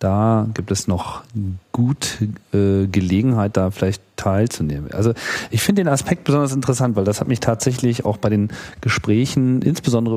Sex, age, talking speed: male, 40-59, 160 wpm